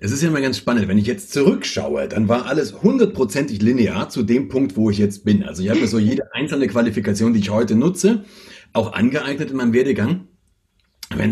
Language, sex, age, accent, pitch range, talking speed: German, male, 40-59, German, 100-140 Hz, 210 wpm